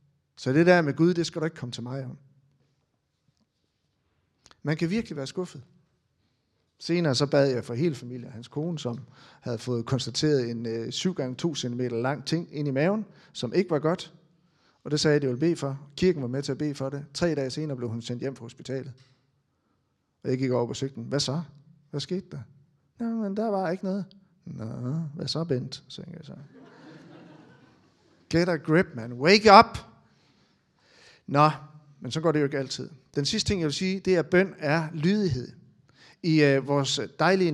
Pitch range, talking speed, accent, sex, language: 130-170 Hz, 200 wpm, native, male, Danish